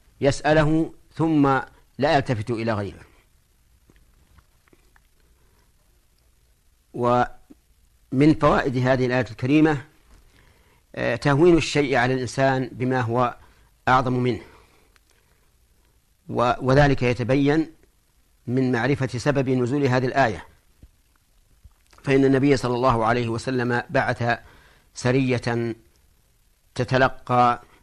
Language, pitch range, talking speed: Arabic, 105-130 Hz, 80 wpm